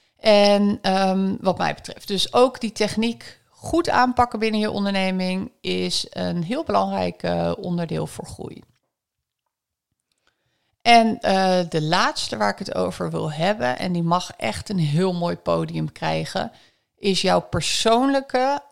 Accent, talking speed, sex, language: Dutch, 140 wpm, female, Dutch